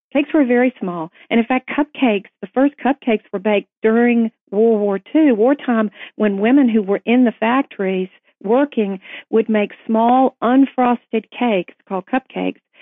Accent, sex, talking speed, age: American, female, 155 wpm, 50-69